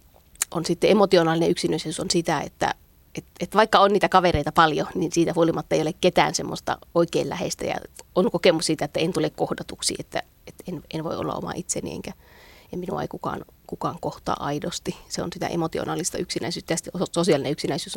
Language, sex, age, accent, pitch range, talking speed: Finnish, female, 30-49, native, 160-185 Hz, 185 wpm